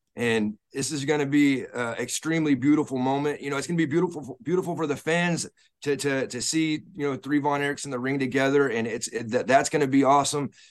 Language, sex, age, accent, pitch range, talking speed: English, male, 30-49, American, 130-150 Hz, 235 wpm